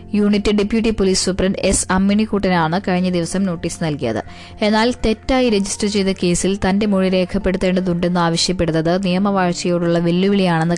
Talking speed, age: 115 wpm, 20-39